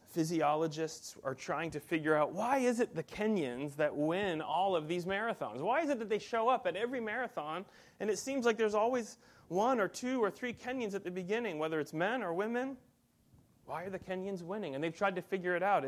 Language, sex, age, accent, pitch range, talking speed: English, male, 30-49, American, 135-185 Hz, 225 wpm